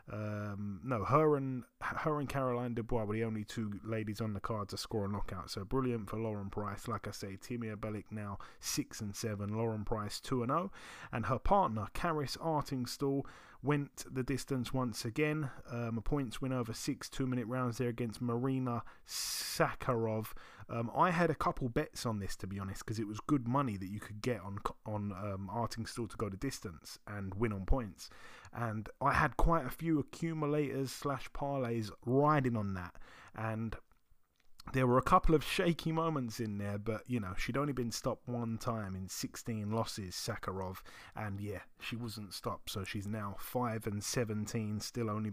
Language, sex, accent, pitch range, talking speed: English, male, British, 105-135 Hz, 185 wpm